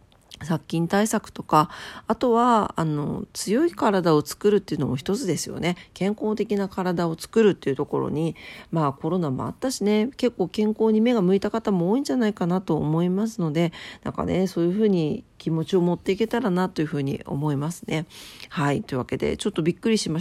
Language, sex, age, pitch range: Japanese, female, 40-59, 160-220 Hz